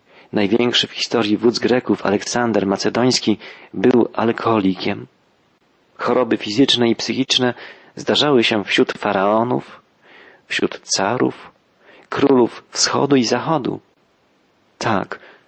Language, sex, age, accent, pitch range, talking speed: Polish, male, 40-59, native, 105-135 Hz, 95 wpm